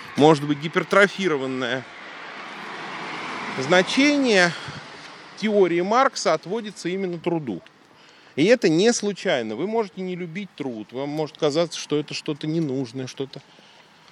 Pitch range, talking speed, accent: 130-180 Hz, 110 wpm, native